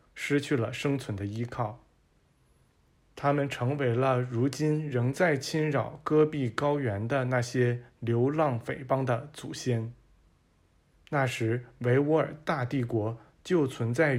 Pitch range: 115-145 Hz